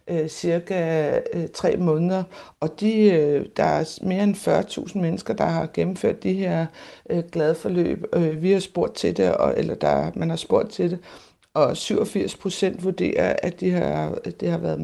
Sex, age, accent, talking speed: female, 60-79, native, 145 wpm